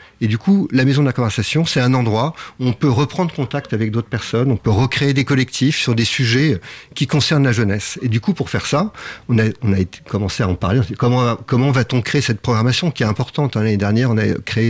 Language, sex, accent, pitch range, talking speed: French, male, French, 110-140 Hz, 245 wpm